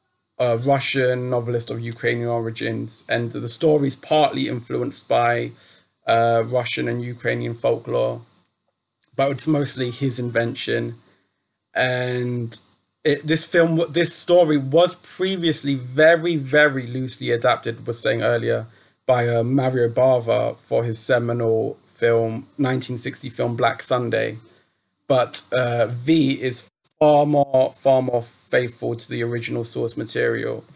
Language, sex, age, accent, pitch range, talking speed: English, male, 20-39, British, 115-140 Hz, 125 wpm